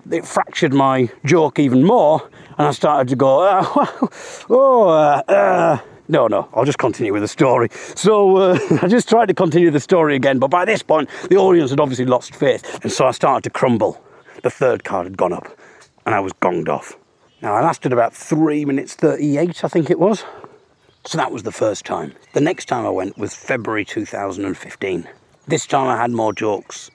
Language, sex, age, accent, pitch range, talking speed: English, male, 40-59, British, 125-180 Hz, 205 wpm